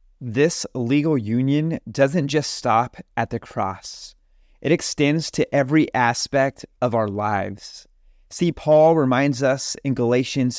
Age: 30-49